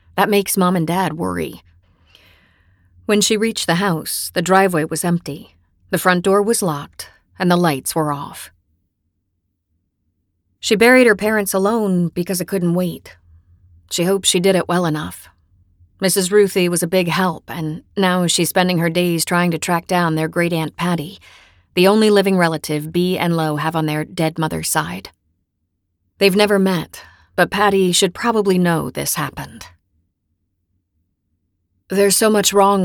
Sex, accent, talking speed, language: female, American, 160 wpm, English